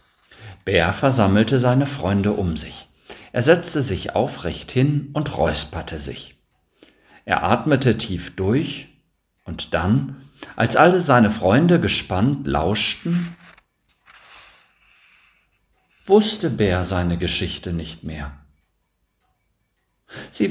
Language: German